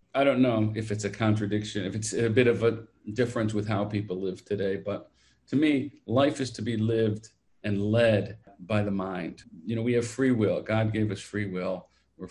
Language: English